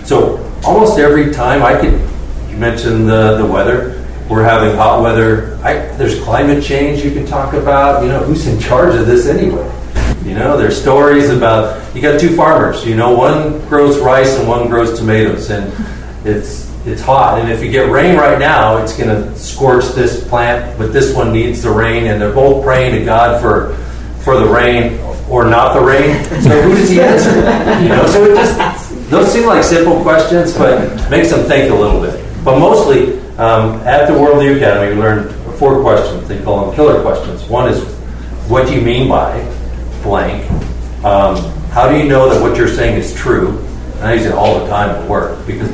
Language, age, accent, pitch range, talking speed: English, 40-59, American, 100-135 Hz, 200 wpm